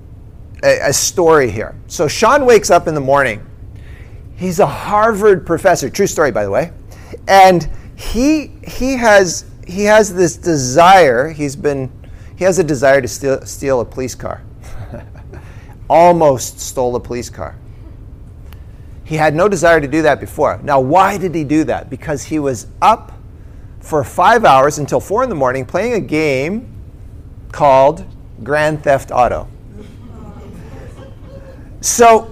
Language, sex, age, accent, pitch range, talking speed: English, male, 40-59, American, 105-175 Hz, 145 wpm